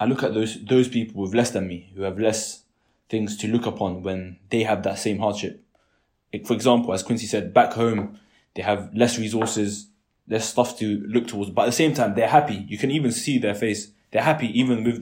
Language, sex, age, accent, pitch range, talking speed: English, male, 20-39, British, 95-115 Hz, 225 wpm